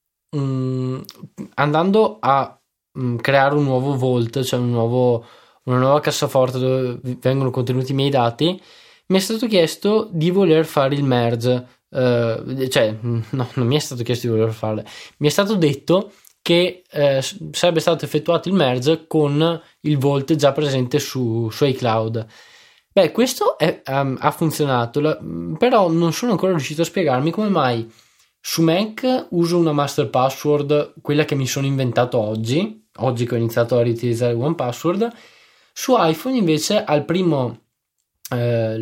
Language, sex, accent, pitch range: Italian, male, native, 125-175 Hz